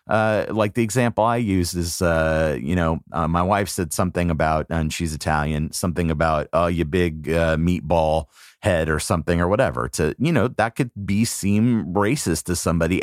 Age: 30-49